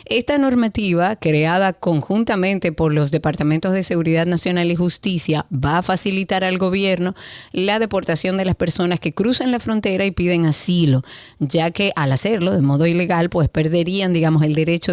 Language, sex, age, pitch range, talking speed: Spanish, female, 30-49, 160-195 Hz, 165 wpm